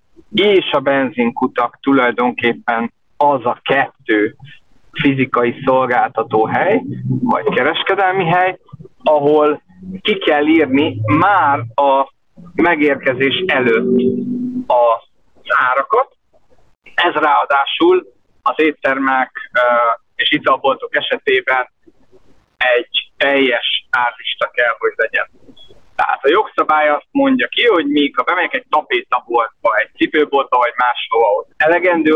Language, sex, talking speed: Hungarian, male, 100 wpm